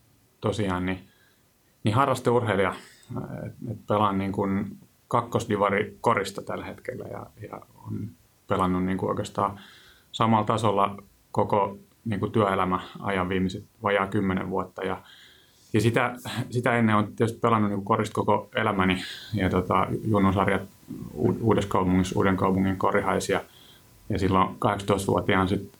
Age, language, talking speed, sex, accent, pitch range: 30-49, Finnish, 115 wpm, male, native, 100-110 Hz